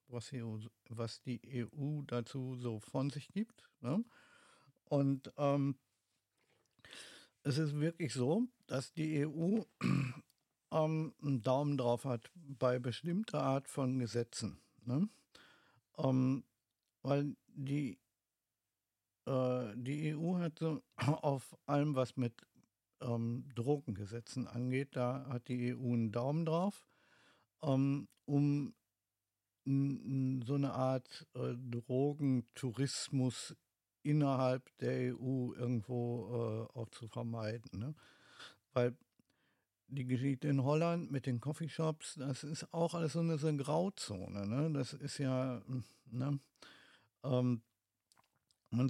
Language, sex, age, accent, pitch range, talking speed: German, male, 50-69, German, 120-145 Hz, 100 wpm